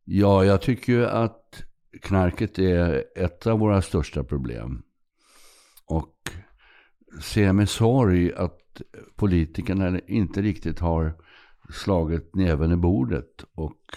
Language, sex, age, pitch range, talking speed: Swedish, male, 60-79, 80-95 Hz, 110 wpm